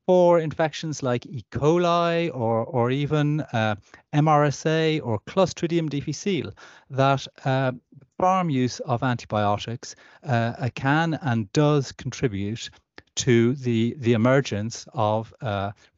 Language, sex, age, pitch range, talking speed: English, male, 30-49, 115-150 Hz, 115 wpm